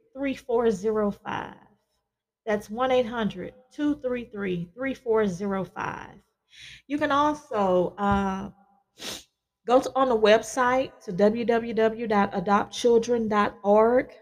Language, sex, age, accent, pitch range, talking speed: English, female, 30-49, American, 195-225 Hz, 80 wpm